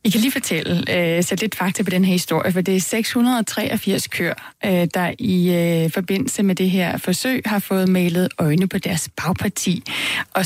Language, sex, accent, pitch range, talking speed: Danish, female, native, 185-230 Hz, 190 wpm